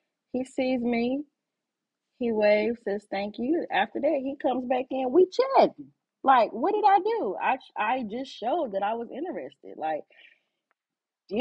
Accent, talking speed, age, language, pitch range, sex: American, 165 wpm, 30-49, English, 190-265 Hz, female